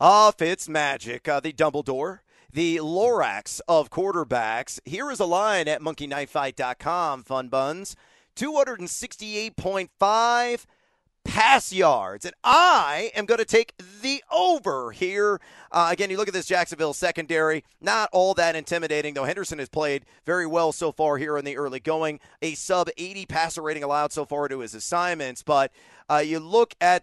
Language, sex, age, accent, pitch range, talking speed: English, male, 40-59, American, 150-195 Hz, 160 wpm